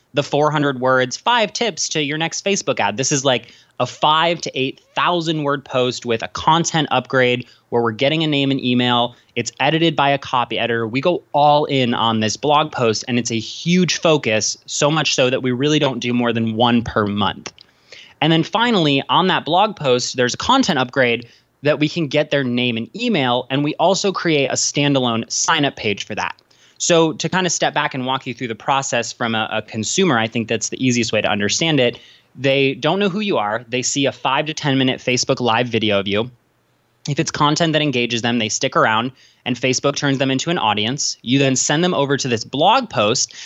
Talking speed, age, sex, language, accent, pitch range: 220 wpm, 20-39, male, English, American, 120-150 Hz